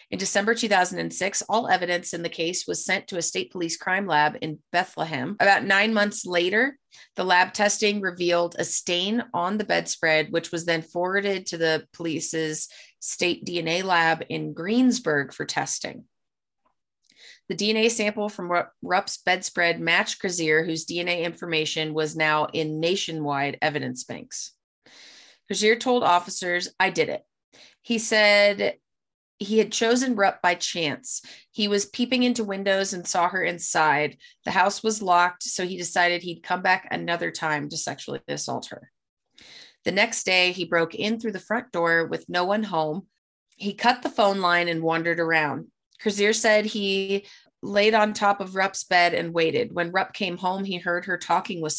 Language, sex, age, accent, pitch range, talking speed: English, female, 30-49, American, 165-205 Hz, 165 wpm